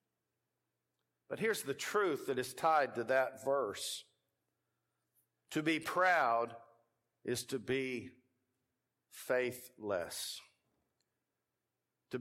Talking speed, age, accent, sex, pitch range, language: 90 wpm, 60-79, American, male, 140-185 Hz, English